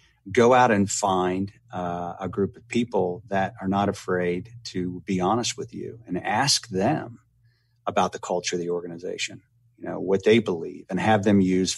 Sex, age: male, 40-59